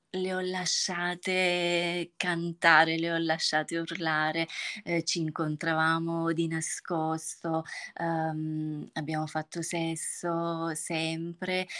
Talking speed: 90 wpm